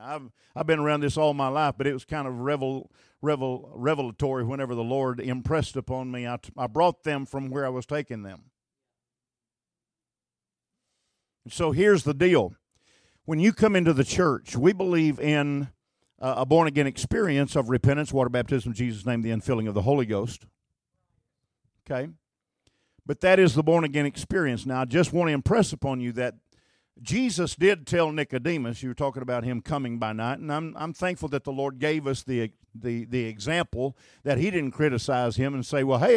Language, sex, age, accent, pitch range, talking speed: English, male, 50-69, American, 125-160 Hz, 190 wpm